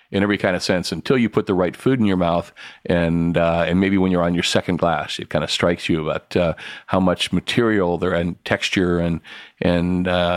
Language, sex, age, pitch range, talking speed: English, male, 40-59, 85-100 Hz, 230 wpm